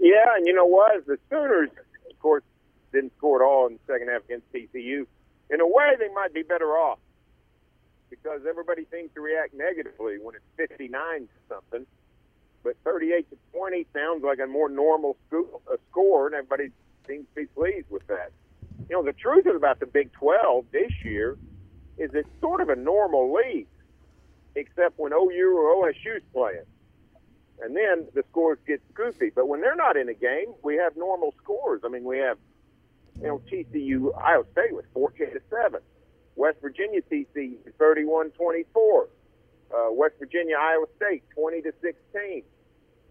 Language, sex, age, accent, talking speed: English, male, 50-69, American, 170 wpm